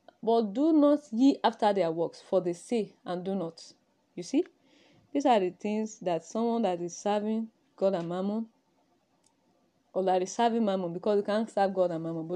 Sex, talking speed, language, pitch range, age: female, 195 wpm, English, 180-290 Hz, 20-39